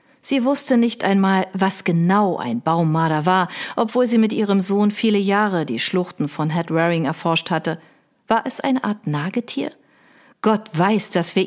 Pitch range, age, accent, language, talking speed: 170-225 Hz, 50-69, German, German, 160 wpm